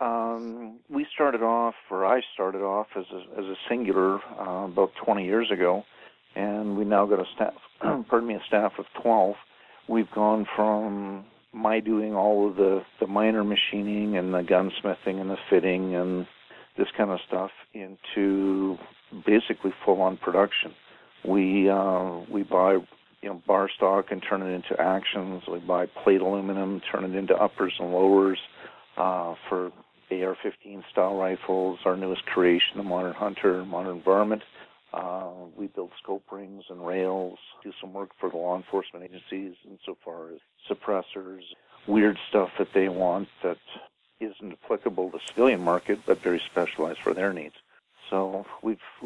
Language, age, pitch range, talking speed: English, 50-69, 90-105 Hz, 160 wpm